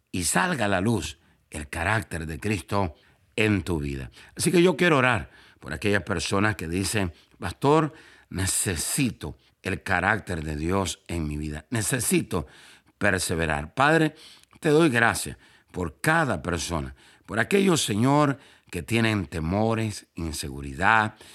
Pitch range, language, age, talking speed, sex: 80-115 Hz, Spanish, 60-79, 130 wpm, male